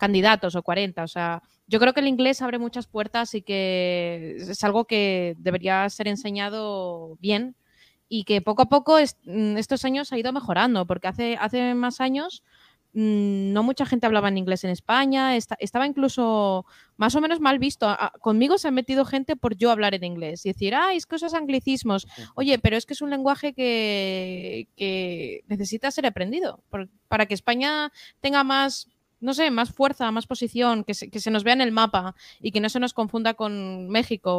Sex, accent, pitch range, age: female, Spanish, 200-250 Hz, 20-39